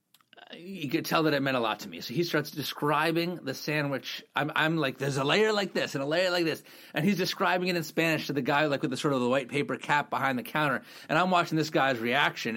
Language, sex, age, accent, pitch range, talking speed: English, male, 30-49, American, 120-160 Hz, 265 wpm